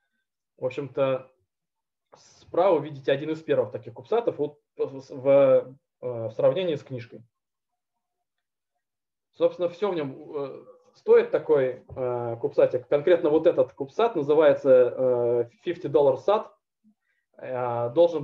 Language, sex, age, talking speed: Russian, male, 20-39, 90 wpm